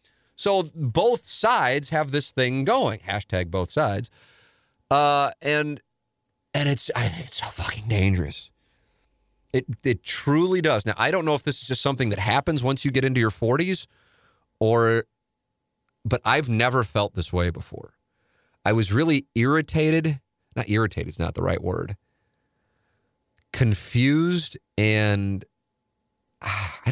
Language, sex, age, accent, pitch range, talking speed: English, male, 30-49, American, 90-125 Hz, 140 wpm